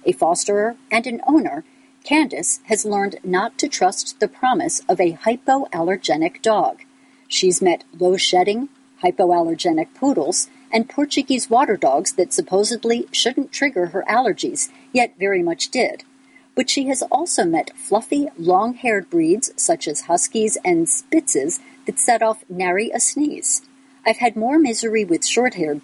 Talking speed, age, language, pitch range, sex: 140 wpm, 50-69, English, 200-295 Hz, female